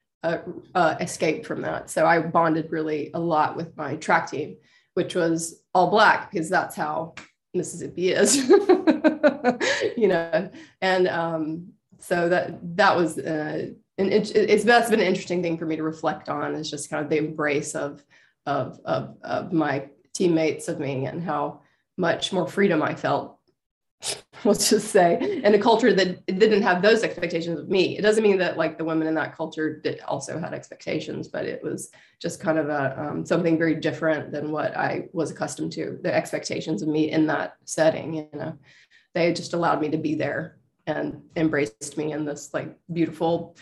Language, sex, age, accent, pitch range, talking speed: English, female, 20-39, American, 155-185 Hz, 185 wpm